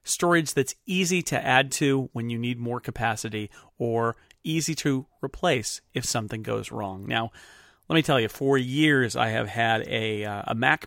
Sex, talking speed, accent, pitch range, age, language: male, 180 wpm, American, 120-145 Hz, 30-49, English